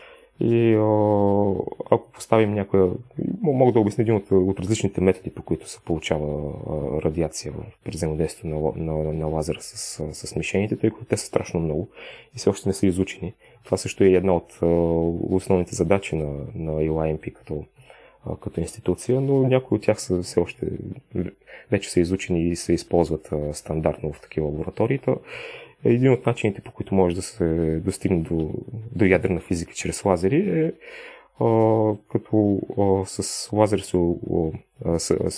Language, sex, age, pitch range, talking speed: Bulgarian, male, 30-49, 85-110 Hz, 155 wpm